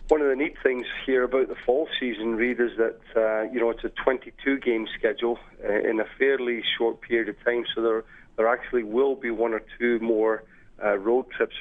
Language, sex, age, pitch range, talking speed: English, male, 40-59, 110-130 Hz, 205 wpm